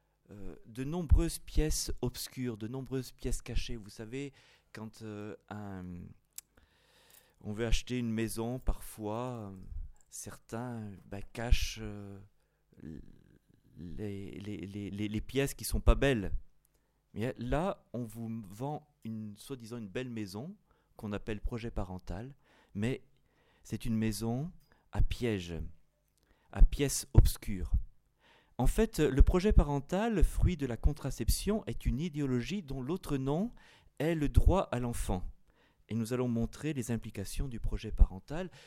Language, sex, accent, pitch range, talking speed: French, male, French, 105-135 Hz, 130 wpm